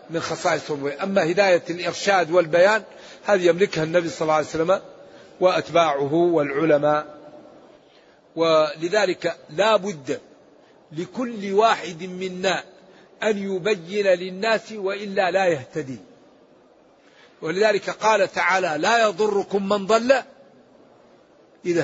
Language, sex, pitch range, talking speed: Arabic, male, 175-215 Hz, 95 wpm